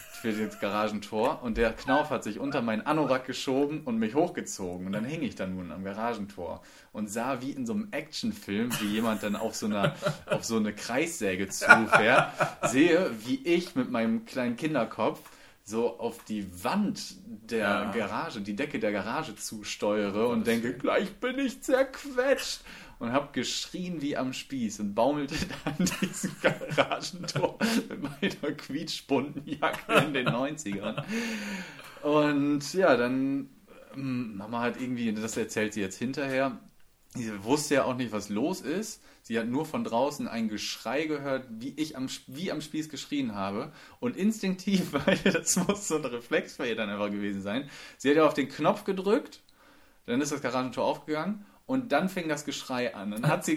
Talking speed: 170 wpm